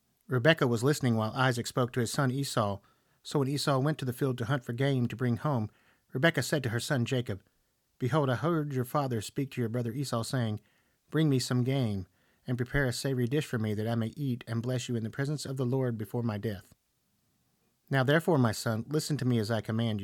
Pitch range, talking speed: 115-135 Hz, 235 wpm